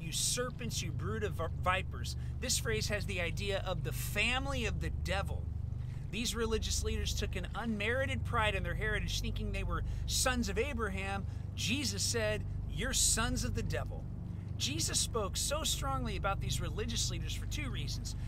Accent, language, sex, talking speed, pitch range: American, English, male, 165 wpm, 95-120 Hz